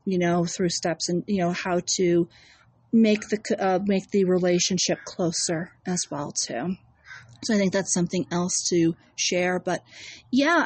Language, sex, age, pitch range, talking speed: English, female, 40-59, 190-240 Hz, 165 wpm